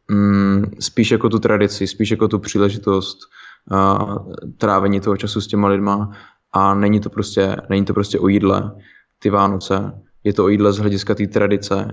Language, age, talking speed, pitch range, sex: Slovak, 20-39, 175 wpm, 95-105 Hz, male